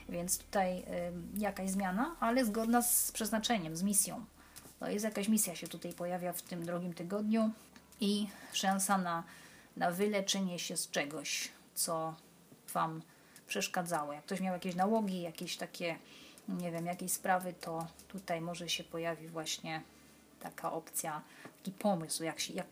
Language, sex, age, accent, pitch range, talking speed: Polish, female, 30-49, native, 180-210 Hz, 145 wpm